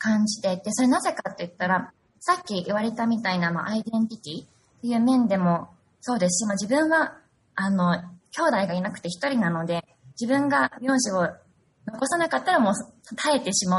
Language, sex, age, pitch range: Japanese, female, 20-39, 180-255 Hz